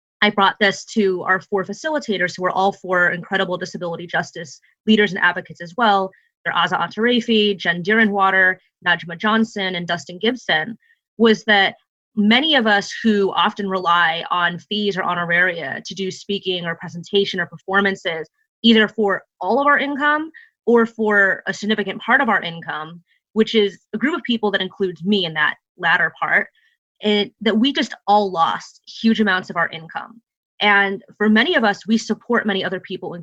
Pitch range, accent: 185-220 Hz, American